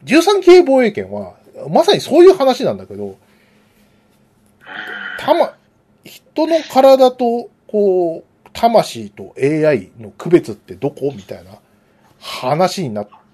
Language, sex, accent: Japanese, male, native